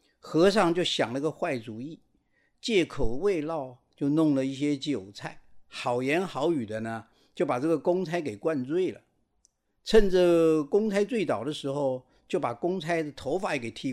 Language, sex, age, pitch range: Chinese, male, 50-69, 140-220 Hz